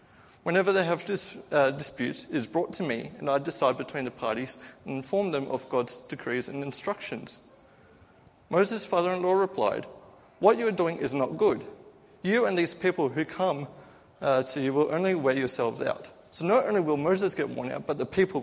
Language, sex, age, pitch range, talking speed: English, male, 20-39, 140-195 Hz, 190 wpm